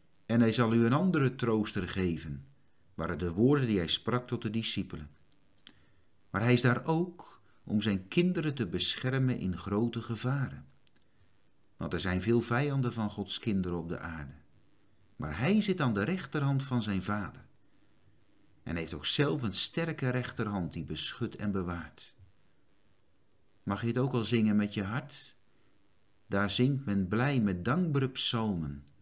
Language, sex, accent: Dutch, male, Dutch